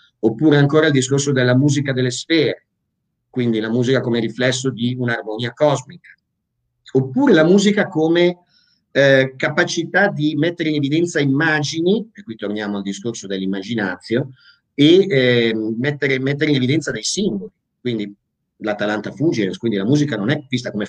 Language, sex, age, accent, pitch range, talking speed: Italian, male, 50-69, native, 120-165 Hz, 145 wpm